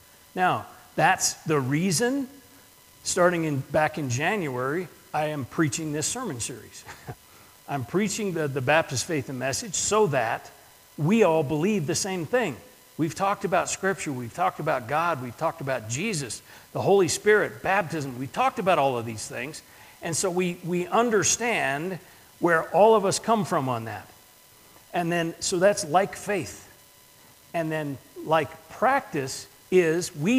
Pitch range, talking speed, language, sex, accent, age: 140-185 Hz, 155 wpm, English, male, American, 50-69